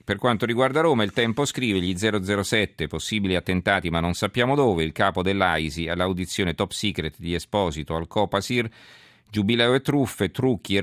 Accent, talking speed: native, 165 wpm